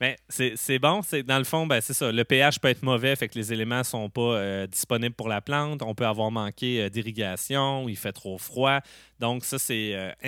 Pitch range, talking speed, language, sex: 110-130 Hz, 240 wpm, French, male